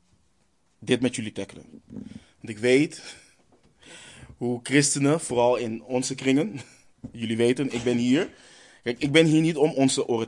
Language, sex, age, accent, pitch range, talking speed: Dutch, male, 20-39, Dutch, 115-140 Hz, 150 wpm